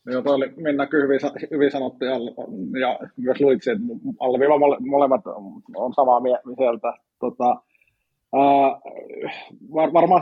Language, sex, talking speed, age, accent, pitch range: Finnish, male, 125 wpm, 20-39, native, 135-155 Hz